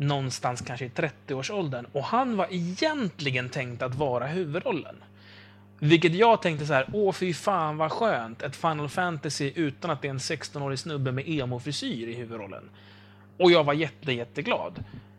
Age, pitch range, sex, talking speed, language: 30-49, 125-180 Hz, male, 160 wpm, English